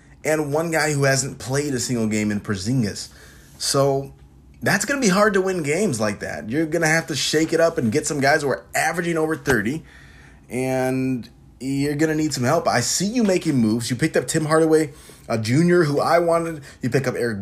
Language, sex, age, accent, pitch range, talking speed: English, male, 20-39, American, 110-155 Hz, 220 wpm